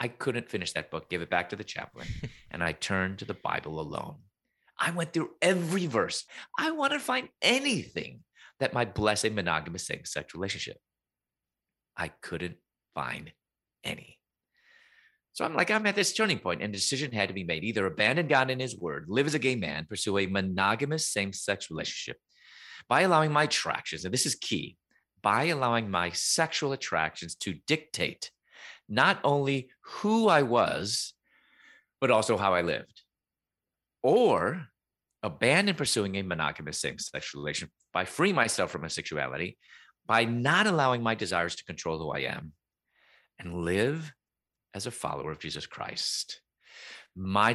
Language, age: English, 30-49